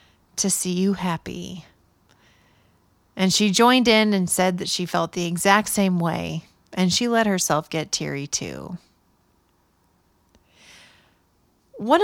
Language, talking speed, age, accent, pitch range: English, 125 wpm, 30-49, American, 165-215 Hz